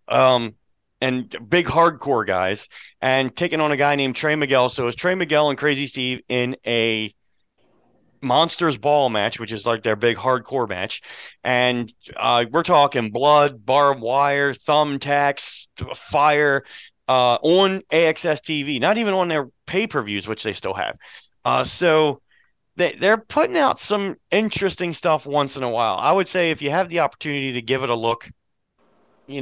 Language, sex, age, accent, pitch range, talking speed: English, male, 30-49, American, 120-150 Hz, 165 wpm